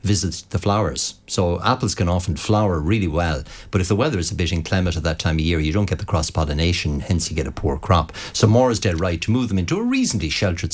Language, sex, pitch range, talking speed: English, male, 85-105 Hz, 255 wpm